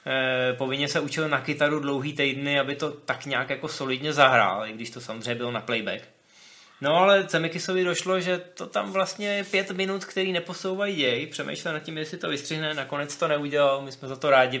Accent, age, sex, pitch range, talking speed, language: native, 20-39, male, 135-175 Hz, 205 wpm, Czech